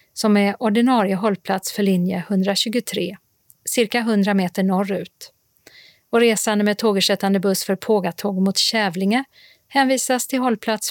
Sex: female